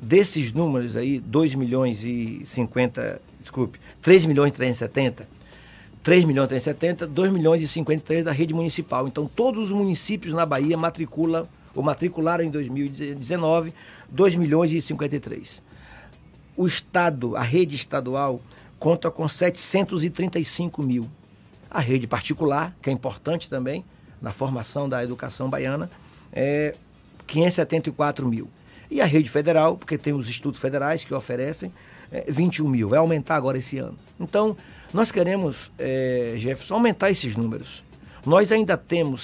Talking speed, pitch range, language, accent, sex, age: 140 wpm, 130-175 Hz, Portuguese, Brazilian, male, 50-69